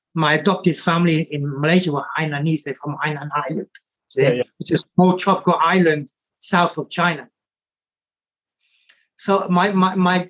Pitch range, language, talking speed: 155-195 Hz, English, 140 wpm